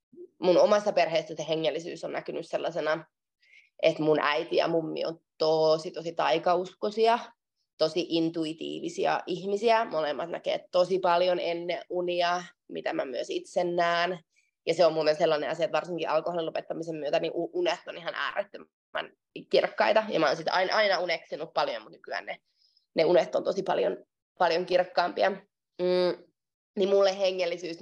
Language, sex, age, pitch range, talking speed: Finnish, female, 20-39, 165-200 Hz, 150 wpm